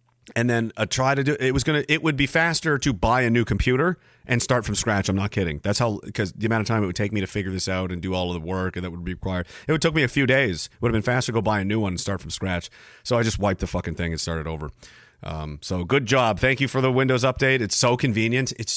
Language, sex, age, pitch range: English, male, 40-59, 100-130 Hz